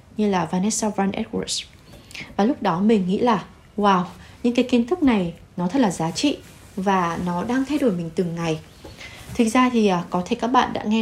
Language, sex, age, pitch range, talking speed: Vietnamese, female, 20-39, 180-240 Hz, 210 wpm